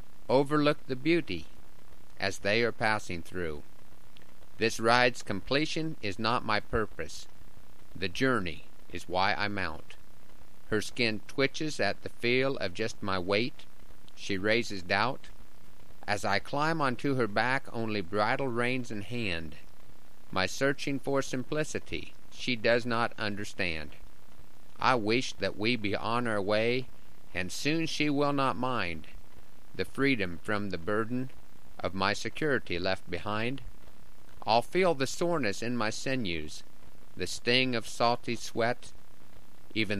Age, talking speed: 50-69, 135 wpm